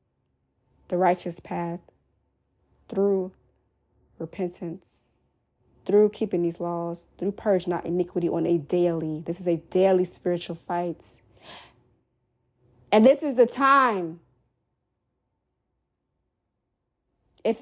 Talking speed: 95 wpm